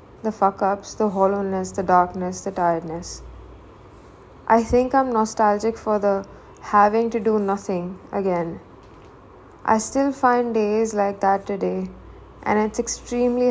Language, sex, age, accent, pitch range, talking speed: English, female, 20-39, Indian, 190-220 Hz, 130 wpm